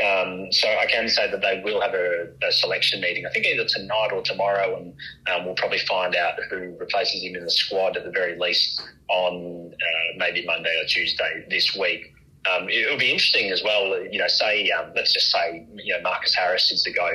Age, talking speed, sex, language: 30-49, 220 wpm, male, English